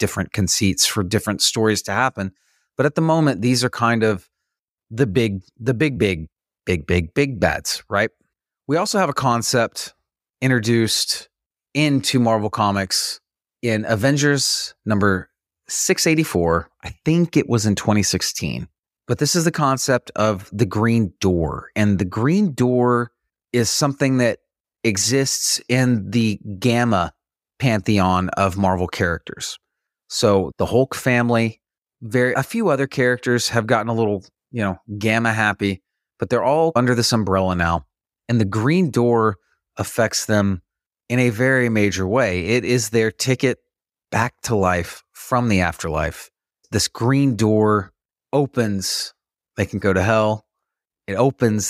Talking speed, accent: 145 wpm, American